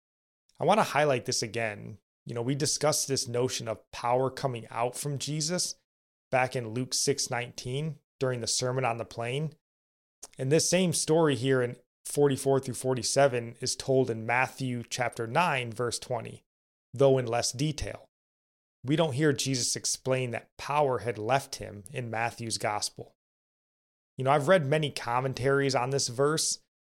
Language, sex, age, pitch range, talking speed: English, male, 30-49, 120-145 Hz, 160 wpm